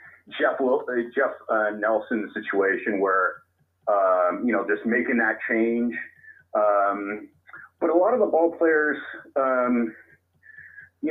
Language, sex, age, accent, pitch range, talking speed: English, male, 30-49, American, 105-150 Hz, 115 wpm